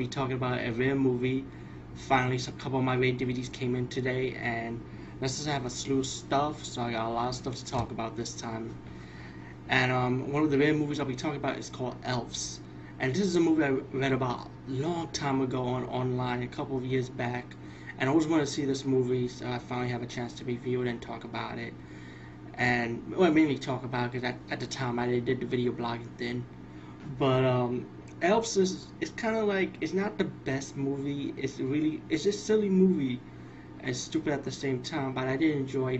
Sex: male